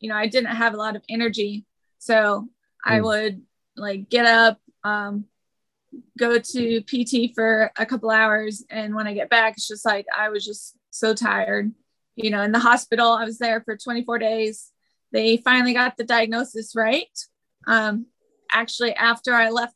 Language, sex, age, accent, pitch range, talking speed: English, female, 20-39, American, 215-240 Hz, 175 wpm